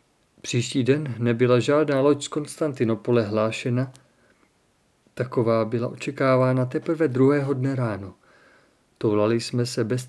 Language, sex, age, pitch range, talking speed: Czech, male, 50-69, 120-145 Hz, 115 wpm